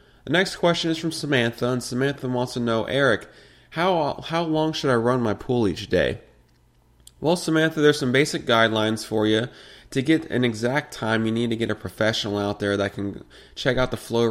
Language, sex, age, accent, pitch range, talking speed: English, male, 20-39, American, 100-120 Hz, 205 wpm